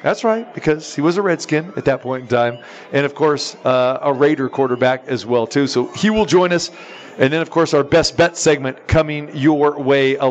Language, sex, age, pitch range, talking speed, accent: English, male, 40-59, 130-155 Hz, 225 wpm, American